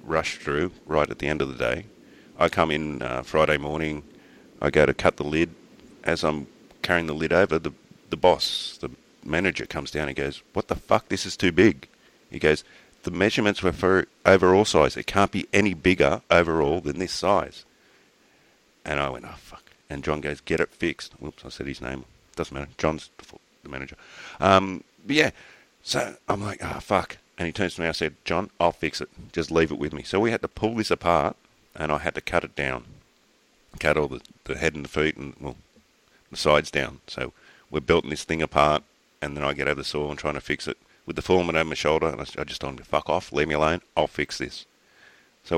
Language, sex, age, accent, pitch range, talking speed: English, male, 40-59, Australian, 70-85 Hz, 230 wpm